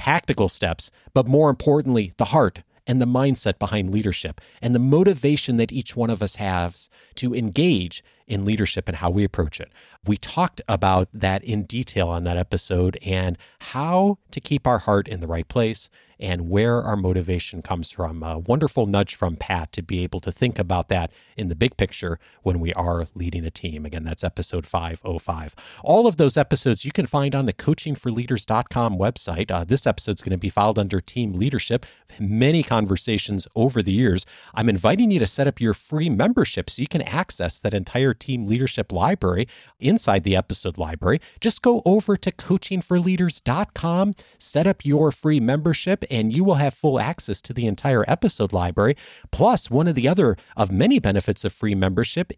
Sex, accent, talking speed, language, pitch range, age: male, American, 185 wpm, English, 95-145 Hz, 30-49